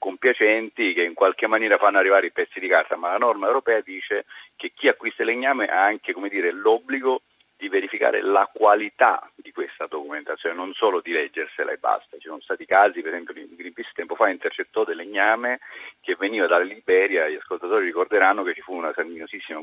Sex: male